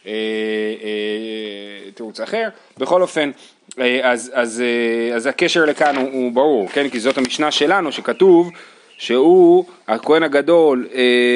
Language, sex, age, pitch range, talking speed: Hebrew, male, 30-49, 125-155 Hz, 105 wpm